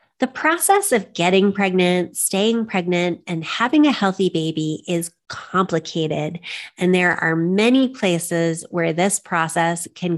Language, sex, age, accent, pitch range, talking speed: English, female, 30-49, American, 165-225 Hz, 135 wpm